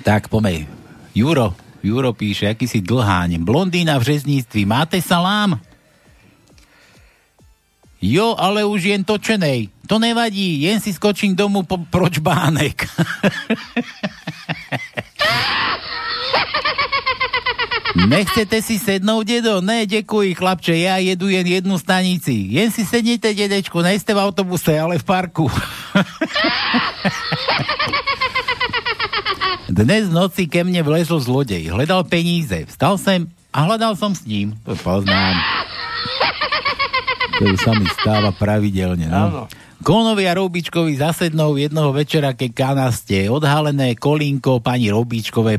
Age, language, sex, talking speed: 50-69, Slovak, male, 110 wpm